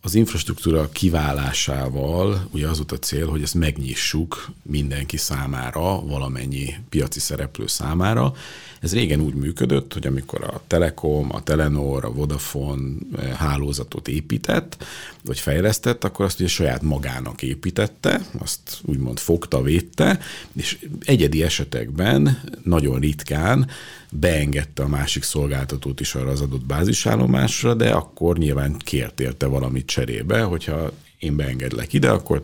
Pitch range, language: 70-80 Hz, Hungarian